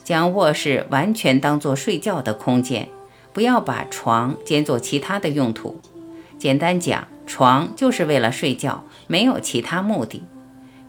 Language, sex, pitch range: Chinese, female, 125-180 Hz